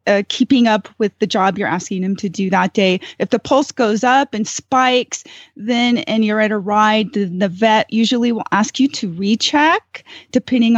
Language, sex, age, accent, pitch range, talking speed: English, female, 30-49, American, 200-245 Hz, 200 wpm